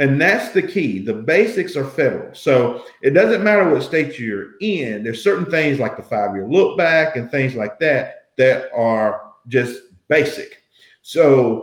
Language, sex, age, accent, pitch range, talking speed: English, male, 50-69, American, 120-160 Hz, 175 wpm